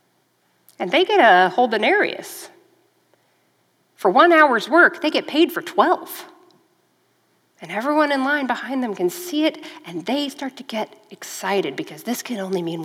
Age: 40-59